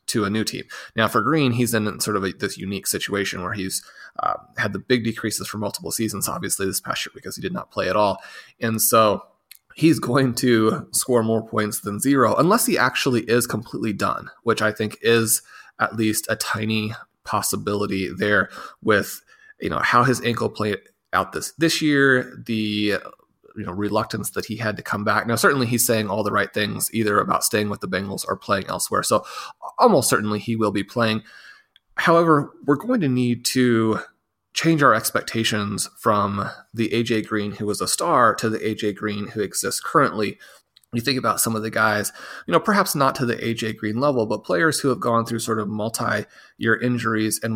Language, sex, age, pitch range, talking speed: English, male, 20-39, 105-120 Hz, 200 wpm